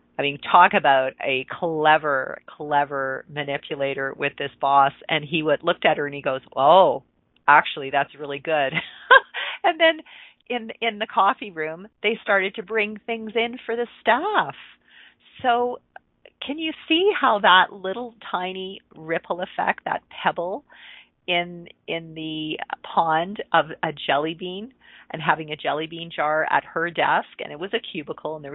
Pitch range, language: 155-195 Hz, English